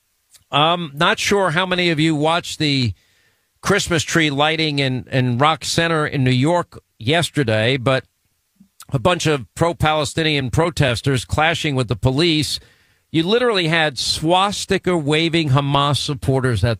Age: 50-69